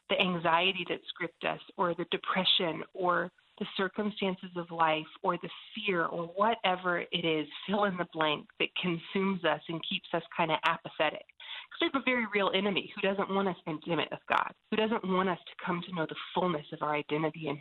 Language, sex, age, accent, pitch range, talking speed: English, female, 40-59, American, 165-210 Hz, 210 wpm